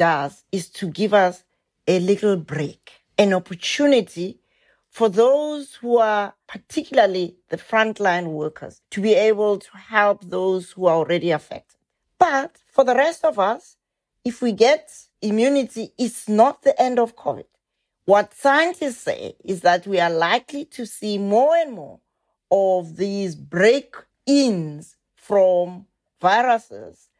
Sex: female